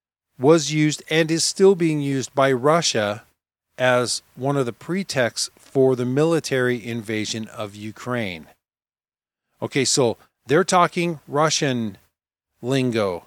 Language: English